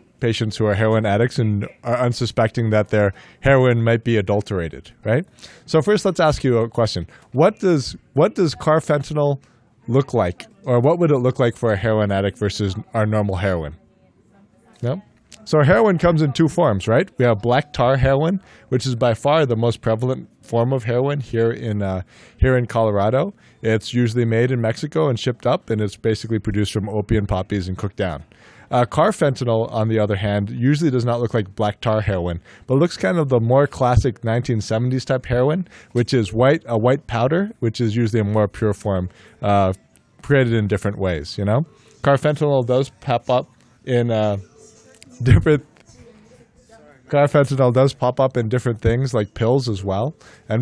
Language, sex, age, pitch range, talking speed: English, male, 20-39, 105-130 Hz, 180 wpm